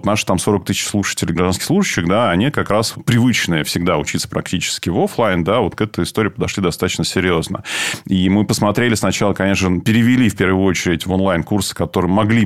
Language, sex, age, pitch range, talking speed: Russian, male, 20-39, 95-115 Hz, 190 wpm